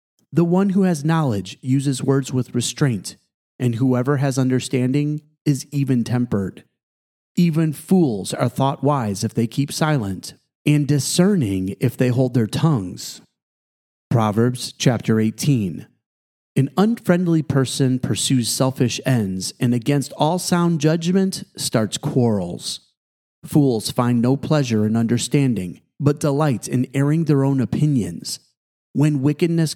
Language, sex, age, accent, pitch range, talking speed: English, male, 30-49, American, 115-145 Hz, 125 wpm